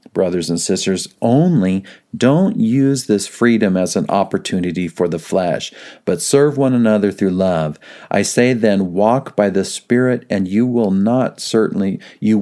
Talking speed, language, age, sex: 160 wpm, English, 40-59, male